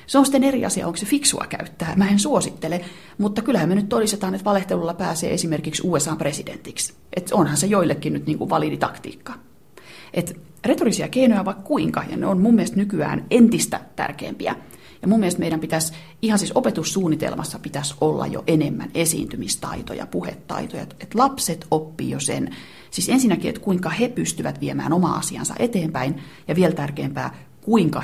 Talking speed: 150 wpm